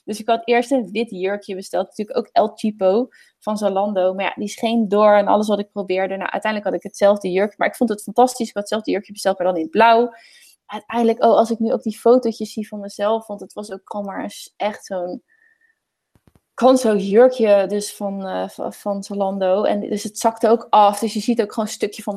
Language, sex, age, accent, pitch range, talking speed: Dutch, female, 20-39, Dutch, 200-255 Hz, 230 wpm